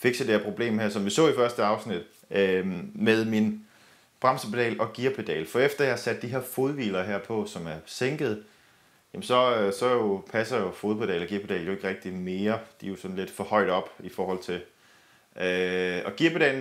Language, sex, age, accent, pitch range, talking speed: Danish, male, 30-49, native, 100-125 Hz, 200 wpm